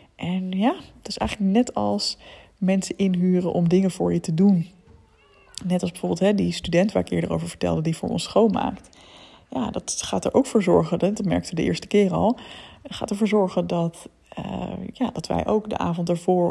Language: Dutch